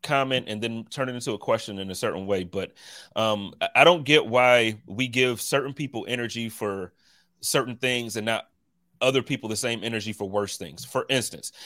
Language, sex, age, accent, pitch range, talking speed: English, male, 30-49, American, 115-155 Hz, 195 wpm